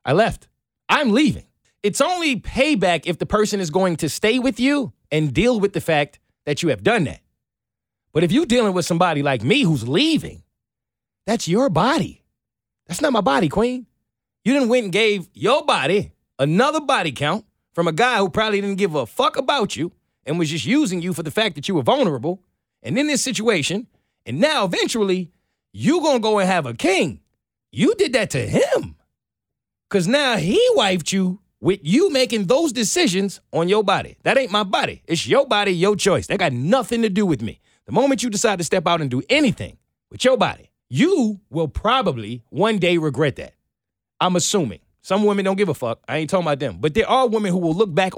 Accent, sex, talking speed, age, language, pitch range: American, male, 210 wpm, 30-49, English, 160-230 Hz